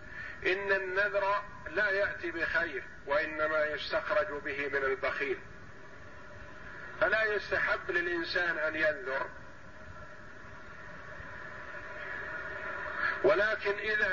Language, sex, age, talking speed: Arabic, male, 50-69, 70 wpm